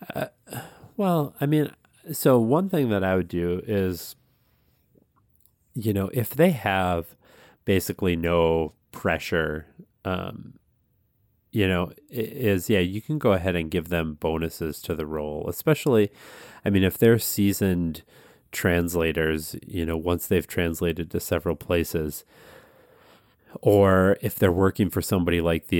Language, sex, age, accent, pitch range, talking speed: English, male, 30-49, American, 85-110 Hz, 135 wpm